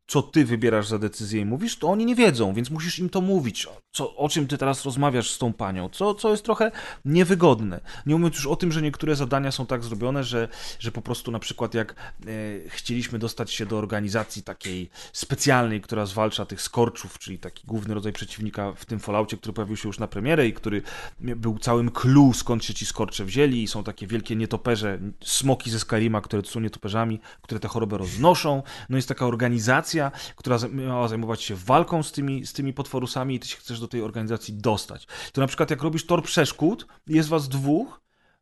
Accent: native